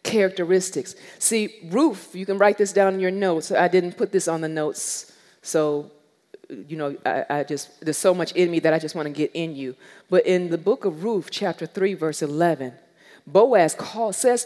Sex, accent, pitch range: female, American, 165-255 Hz